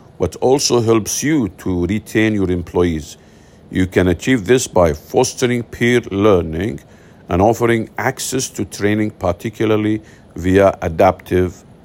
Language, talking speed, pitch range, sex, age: English, 120 wpm, 95-115 Hz, male, 50-69